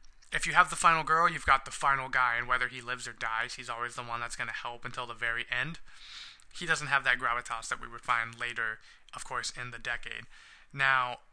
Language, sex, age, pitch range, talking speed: English, male, 20-39, 125-150 Hz, 240 wpm